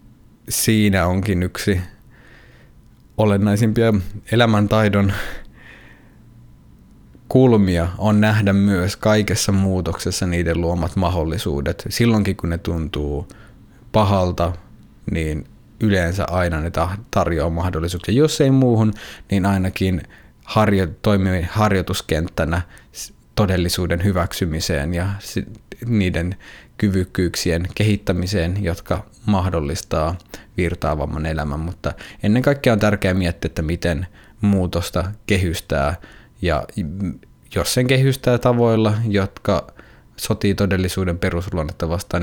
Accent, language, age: native, Finnish, 20-39